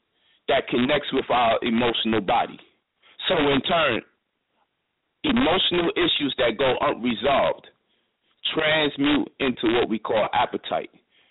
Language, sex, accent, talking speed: English, male, American, 105 wpm